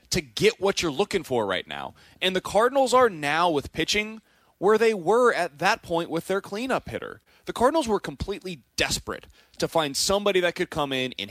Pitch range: 165-240 Hz